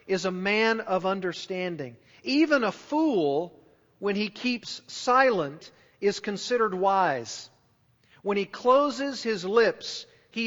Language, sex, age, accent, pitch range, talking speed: English, male, 40-59, American, 160-210 Hz, 120 wpm